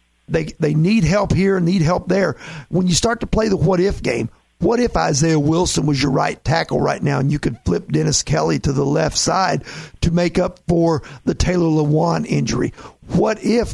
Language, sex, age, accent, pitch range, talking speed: English, male, 50-69, American, 150-190 Hz, 205 wpm